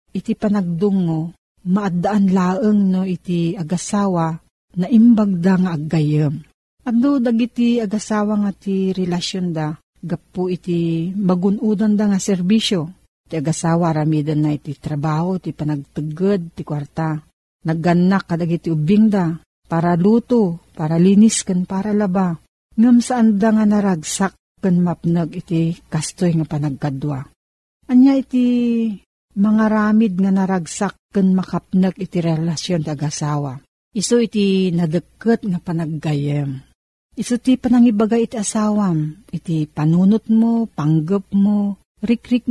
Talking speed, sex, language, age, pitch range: 115 wpm, female, Filipino, 50-69, 165-210 Hz